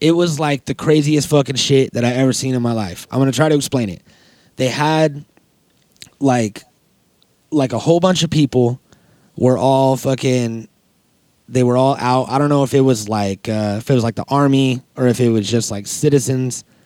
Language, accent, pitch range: English, American, 120-140 Hz